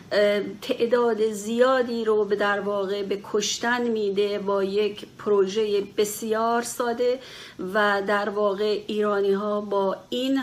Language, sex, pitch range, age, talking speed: Persian, female, 205-235 Hz, 50-69, 110 wpm